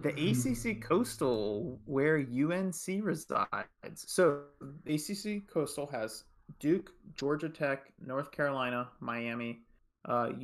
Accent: American